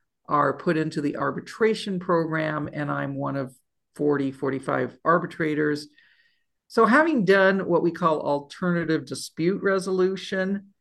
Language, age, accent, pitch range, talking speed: English, 50-69, American, 145-175 Hz, 120 wpm